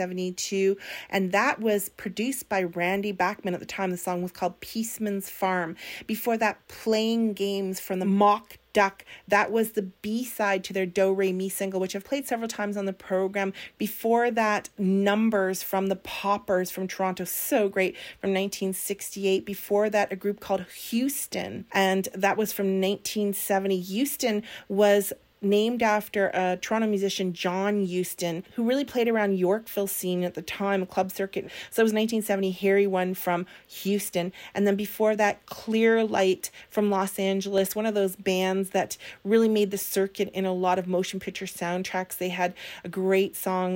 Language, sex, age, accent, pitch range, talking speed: English, female, 40-59, American, 185-210 Hz, 170 wpm